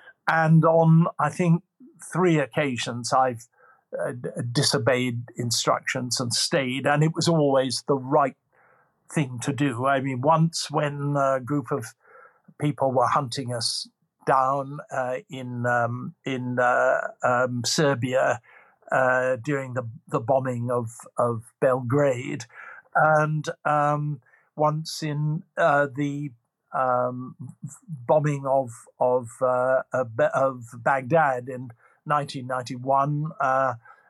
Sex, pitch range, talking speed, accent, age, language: male, 130-160 Hz, 110 wpm, British, 50-69, English